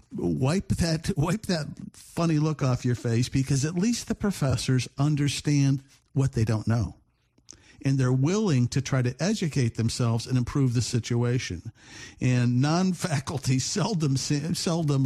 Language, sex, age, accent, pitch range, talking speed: English, male, 50-69, American, 120-155 Hz, 150 wpm